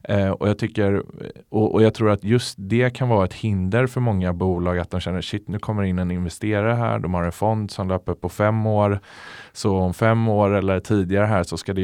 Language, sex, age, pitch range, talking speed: Swedish, male, 20-39, 90-110 Hz, 220 wpm